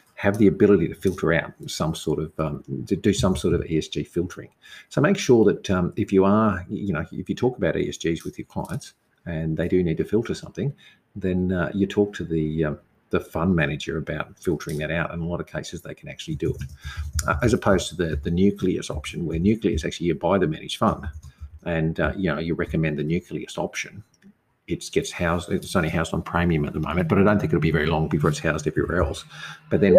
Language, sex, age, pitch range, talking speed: English, male, 50-69, 80-105 Hz, 235 wpm